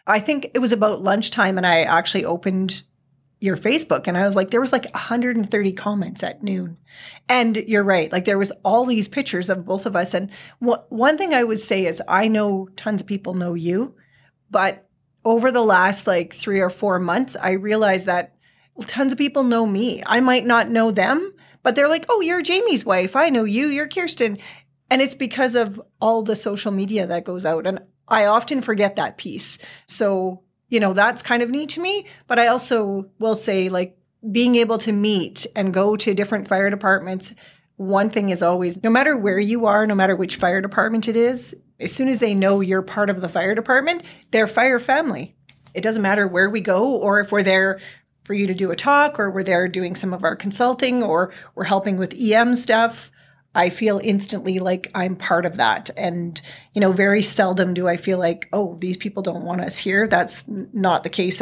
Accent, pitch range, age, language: American, 185-230 Hz, 30-49, English